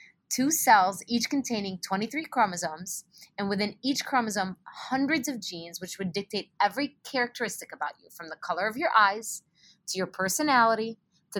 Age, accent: 20-39, American